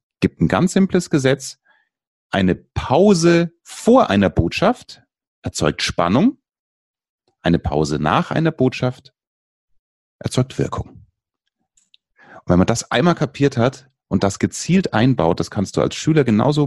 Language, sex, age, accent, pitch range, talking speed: German, male, 30-49, German, 110-150 Hz, 125 wpm